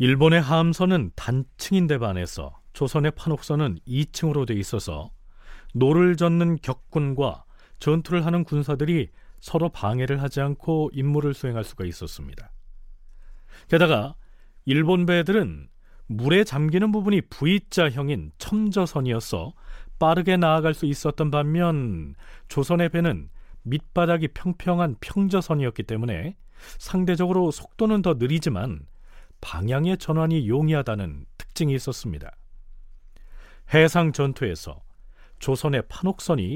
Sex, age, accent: male, 40-59, native